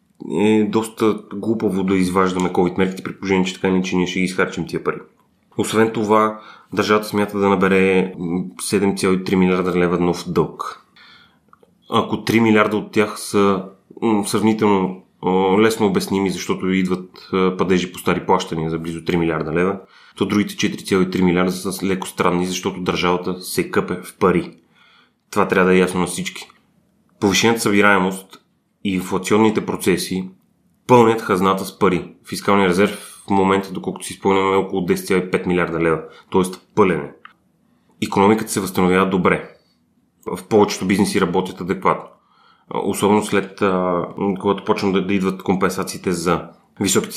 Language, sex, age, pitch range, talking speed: Bulgarian, male, 30-49, 90-105 Hz, 140 wpm